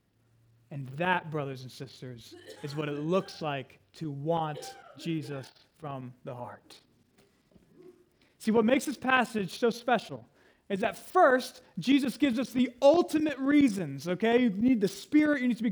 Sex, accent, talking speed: male, American, 155 wpm